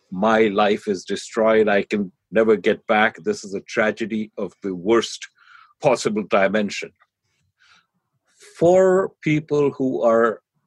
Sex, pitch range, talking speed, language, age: male, 110-155 Hz, 125 wpm, English, 50-69